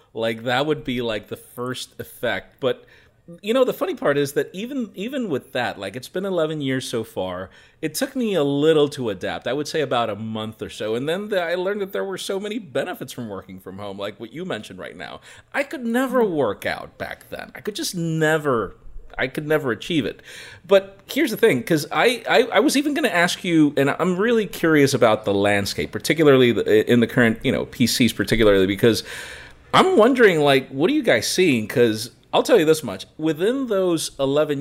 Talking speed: 220 wpm